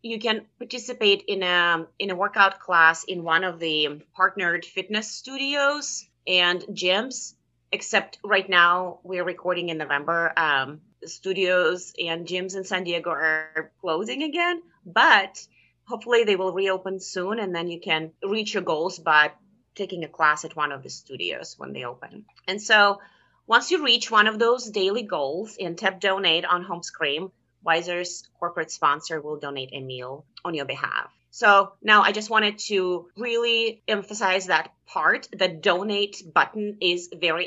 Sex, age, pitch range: female, 30-49, 165-210 Hz